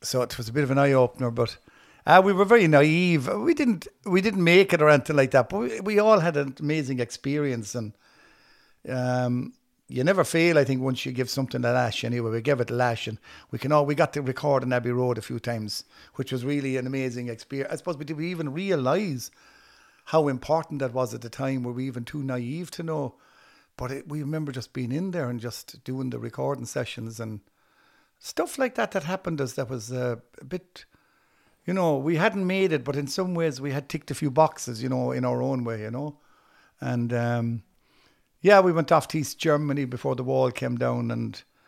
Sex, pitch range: male, 120-155 Hz